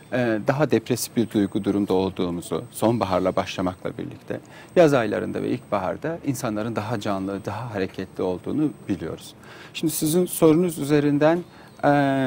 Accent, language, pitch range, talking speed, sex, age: native, Turkish, 115-160 Hz, 115 wpm, male, 40-59